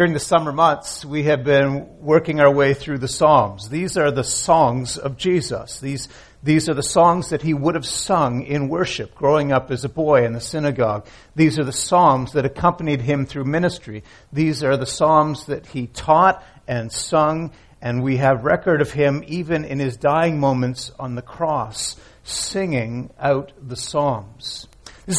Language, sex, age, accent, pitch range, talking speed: English, male, 50-69, American, 130-160 Hz, 180 wpm